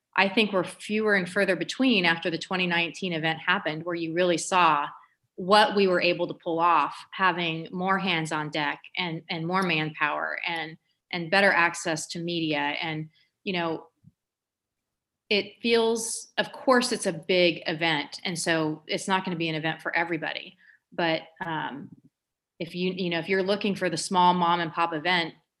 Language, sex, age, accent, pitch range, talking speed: English, female, 30-49, American, 165-190 Hz, 180 wpm